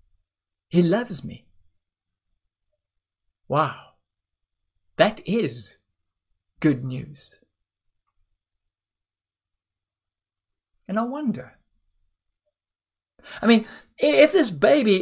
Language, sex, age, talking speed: English, male, 50-69, 65 wpm